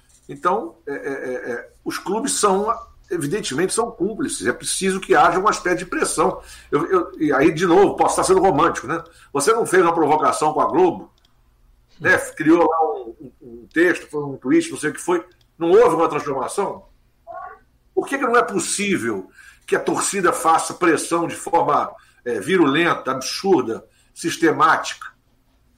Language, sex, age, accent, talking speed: Portuguese, male, 60-79, Brazilian, 170 wpm